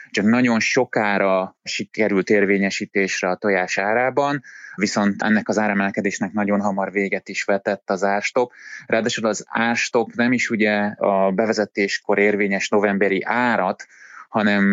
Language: Hungarian